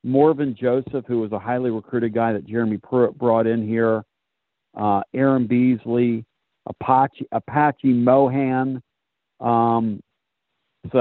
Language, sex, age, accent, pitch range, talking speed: English, male, 50-69, American, 110-135 Hz, 120 wpm